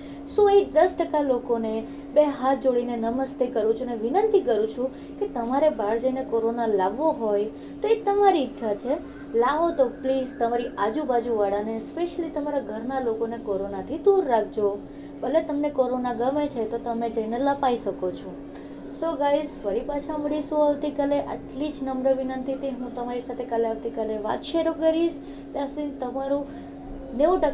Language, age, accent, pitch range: Gujarati, 20-39, native, 225-285 Hz